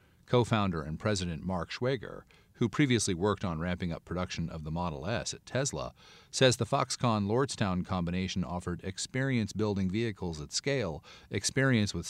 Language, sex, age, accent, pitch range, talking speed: English, male, 40-59, American, 90-120 Hz, 160 wpm